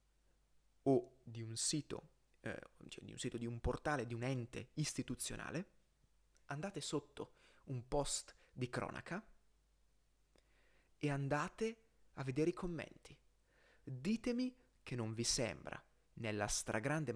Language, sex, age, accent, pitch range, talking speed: Italian, male, 30-49, native, 145-210 Hz, 110 wpm